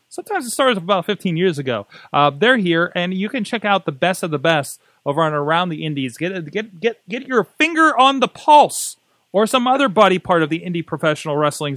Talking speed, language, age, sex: 225 wpm, English, 30-49, male